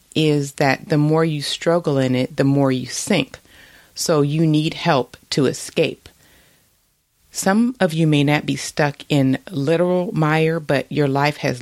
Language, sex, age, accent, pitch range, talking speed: English, female, 30-49, American, 135-160 Hz, 165 wpm